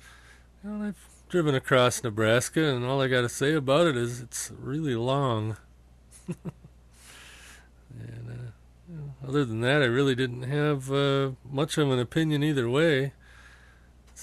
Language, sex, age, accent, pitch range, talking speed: English, male, 40-59, American, 110-145 Hz, 150 wpm